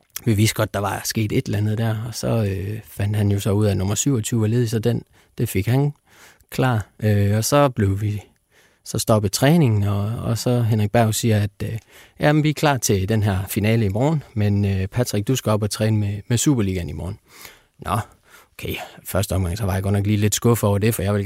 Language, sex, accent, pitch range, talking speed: Danish, male, native, 100-125 Hz, 245 wpm